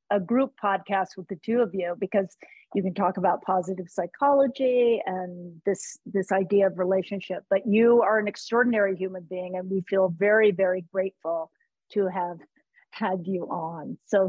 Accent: American